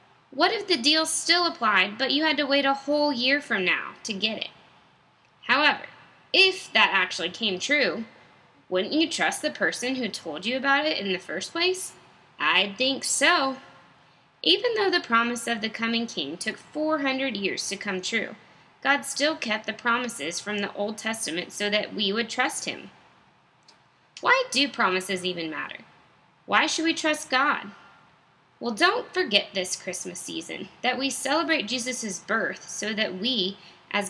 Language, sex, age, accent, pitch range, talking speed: English, female, 20-39, American, 205-285 Hz, 170 wpm